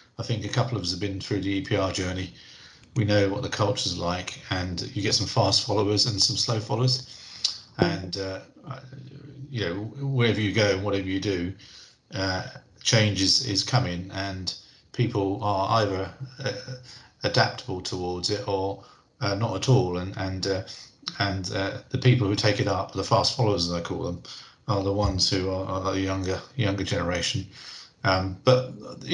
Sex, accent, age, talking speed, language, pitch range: male, British, 40-59, 185 wpm, English, 95-125 Hz